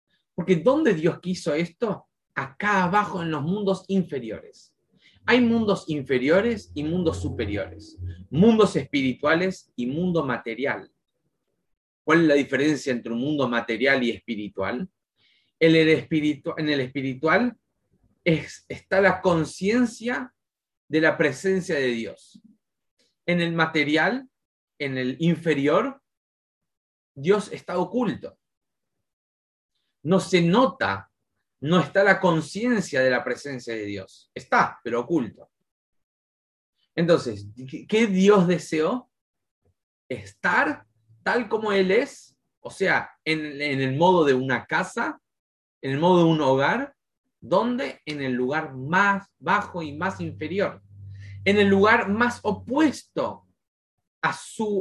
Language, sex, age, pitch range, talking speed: English, male, 30-49, 130-190 Hz, 120 wpm